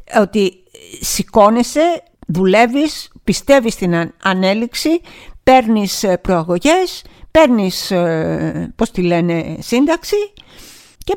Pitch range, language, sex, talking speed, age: 185-275 Hz, Greek, female, 70 wpm, 50-69